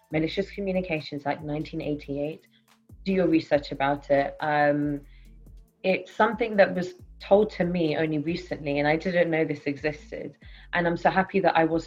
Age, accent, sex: 20-39, British, female